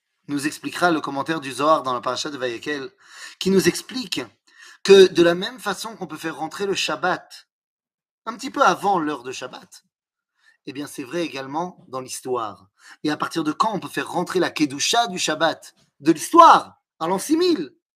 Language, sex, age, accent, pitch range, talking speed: French, male, 30-49, French, 150-220 Hz, 195 wpm